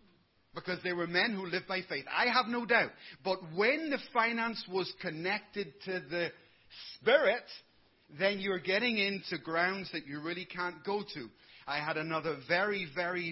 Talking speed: 165 wpm